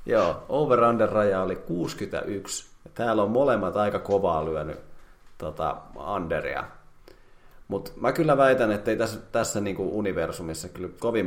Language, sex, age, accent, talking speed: Finnish, male, 30-49, native, 130 wpm